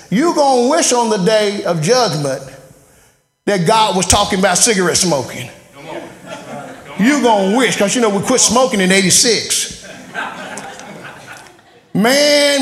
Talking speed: 130 wpm